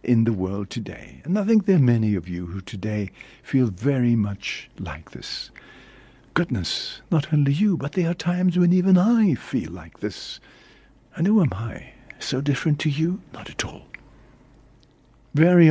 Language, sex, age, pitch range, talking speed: English, male, 60-79, 115-160 Hz, 170 wpm